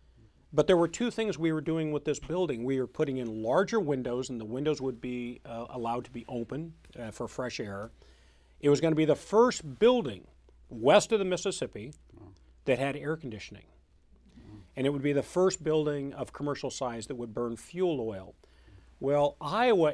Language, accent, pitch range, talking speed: English, American, 115-145 Hz, 195 wpm